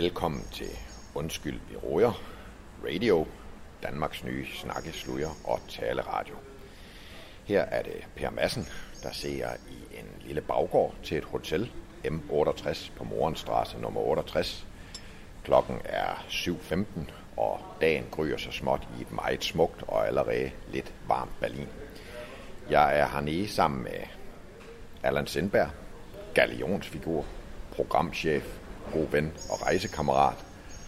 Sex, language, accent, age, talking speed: male, Danish, native, 60-79, 115 wpm